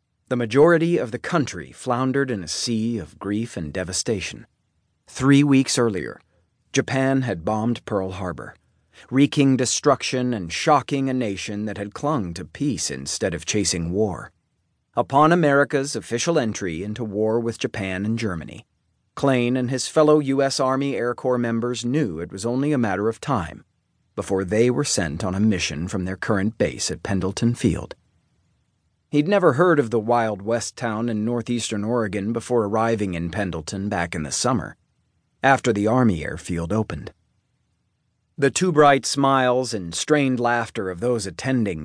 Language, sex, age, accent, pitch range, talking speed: English, male, 40-59, American, 95-130 Hz, 160 wpm